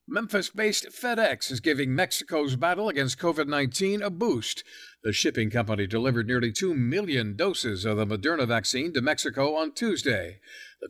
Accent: American